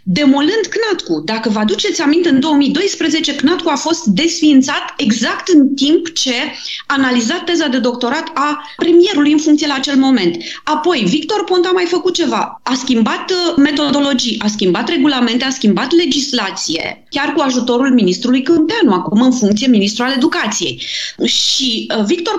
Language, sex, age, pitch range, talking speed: Romanian, female, 30-49, 220-300 Hz, 150 wpm